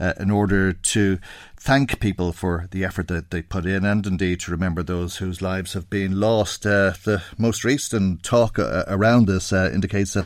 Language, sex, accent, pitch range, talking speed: English, male, Irish, 95-110 Hz, 195 wpm